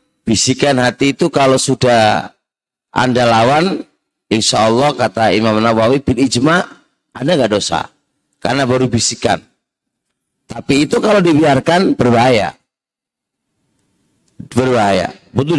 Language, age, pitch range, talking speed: Indonesian, 40-59, 95-130 Hz, 100 wpm